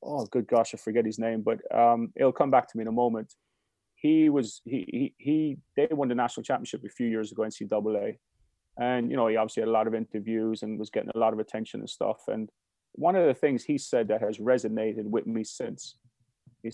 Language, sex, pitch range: English, male, 110-130 Hz